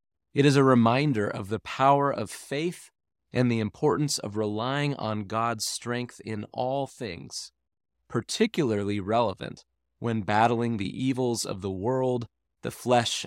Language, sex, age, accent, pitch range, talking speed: English, male, 30-49, American, 100-135 Hz, 140 wpm